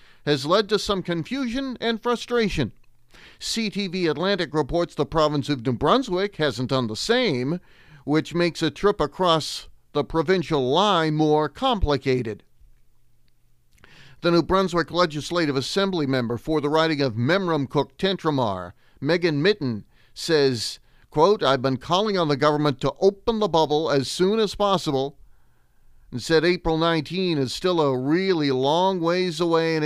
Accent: American